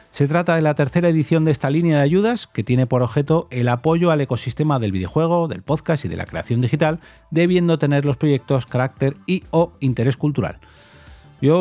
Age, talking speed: 30-49, 195 wpm